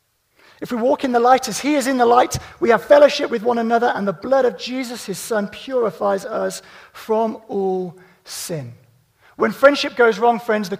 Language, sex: English, male